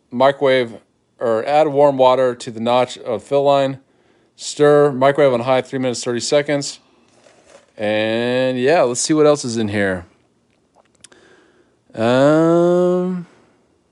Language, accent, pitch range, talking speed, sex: English, American, 120-140 Hz, 130 wpm, male